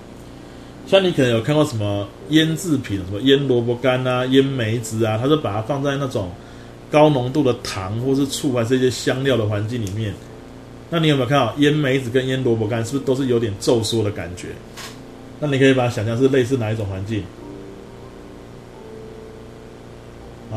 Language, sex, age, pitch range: Chinese, male, 30-49, 110-135 Hz